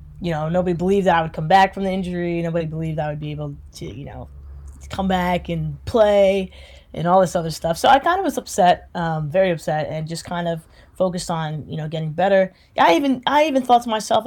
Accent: American